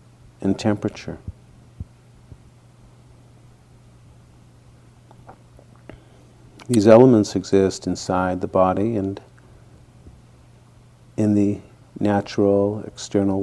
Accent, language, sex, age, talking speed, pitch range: American, English, male, 50-69, 60 wpm, 90-120 Hz